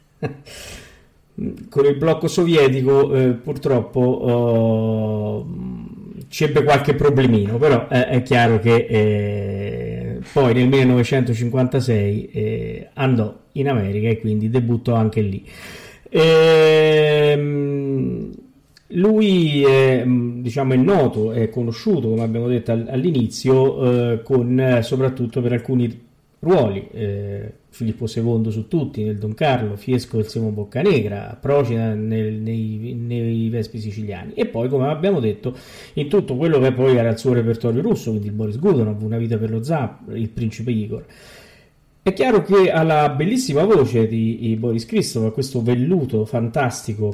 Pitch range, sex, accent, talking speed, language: 110-140 Hz, male, native, 130 wpm, Italian